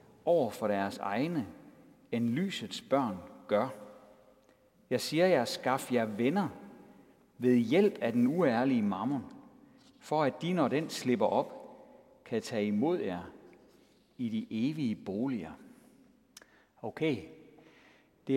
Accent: native